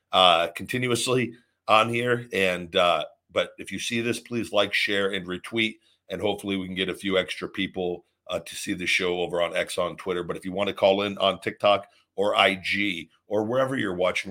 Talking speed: 210 wpm